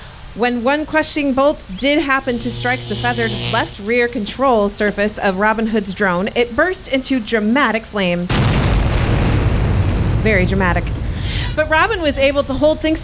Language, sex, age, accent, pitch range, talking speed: English, female, 30-49, American, 200-275 Hz, 145 wpm